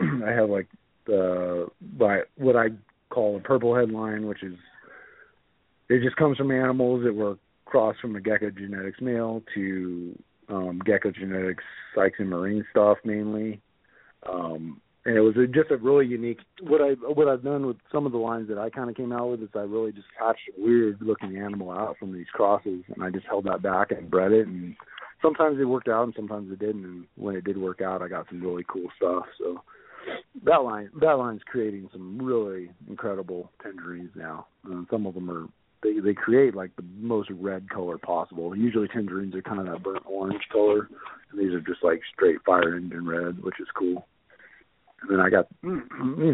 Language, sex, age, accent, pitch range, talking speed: English, male, 40-59, American, 90-115 Hz, 200 wpm